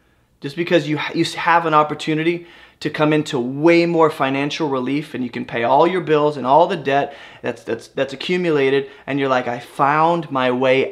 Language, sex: English, male